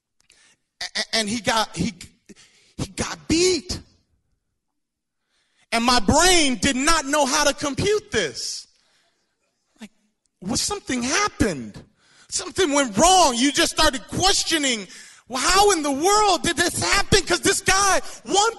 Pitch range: 285-375 Hz